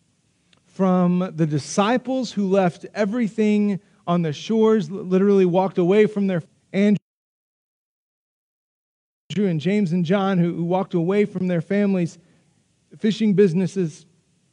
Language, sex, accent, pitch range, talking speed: Ukrainian, male, American, 170-200 Hz, 110 wpm